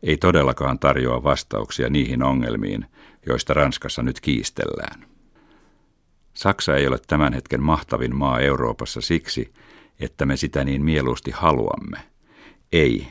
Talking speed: 120 wpm